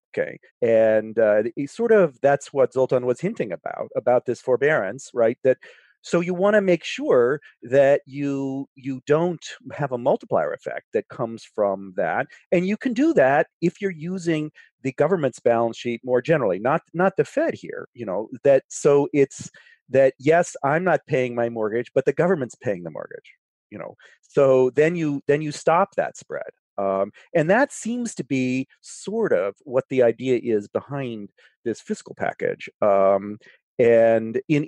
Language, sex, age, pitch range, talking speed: English, male, 40-59, 125-175 Hz, 175 wpm